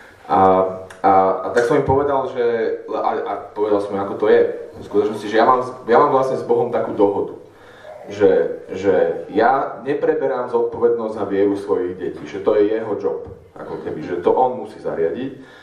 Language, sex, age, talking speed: Slovak, male, 30-49, 180 wpm